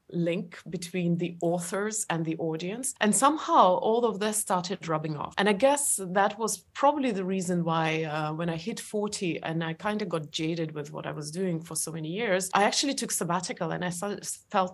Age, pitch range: 30-49, 170-215 Hz